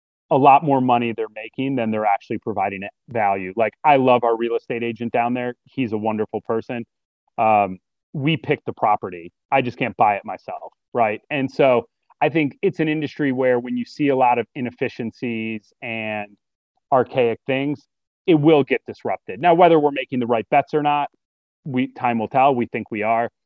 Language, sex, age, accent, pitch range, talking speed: English, male, 30-49, American, 110-140 Hz, 190 wpm